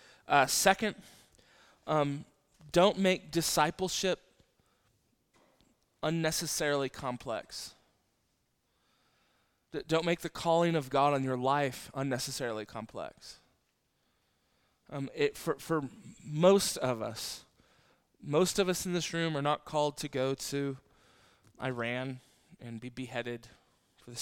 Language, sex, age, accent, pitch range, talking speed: English, male, 20-39, American, 130-155 Hz, 110 wpm